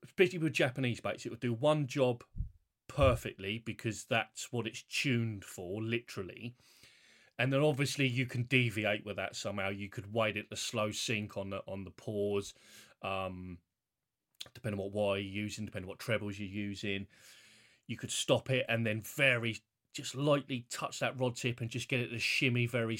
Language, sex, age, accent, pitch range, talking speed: English, male, 30-49, British, 105-125 Hz, 185 wpm